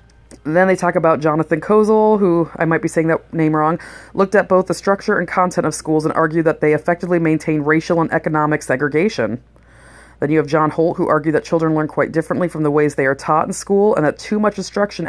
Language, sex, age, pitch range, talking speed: English, female, 30-49, 150-170 Hz, 230 wpm